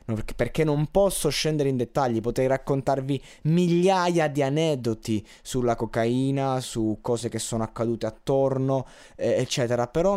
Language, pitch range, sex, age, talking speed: Italian, 115-145 Hz, male, 20-39, 130 wpm